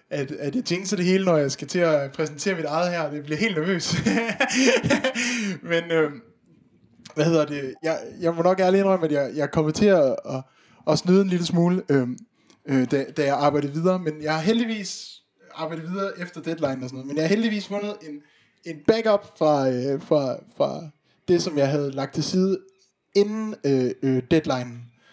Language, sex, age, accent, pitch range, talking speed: Danish, male, 20-39, native, 135-180 Hz, 200 wpm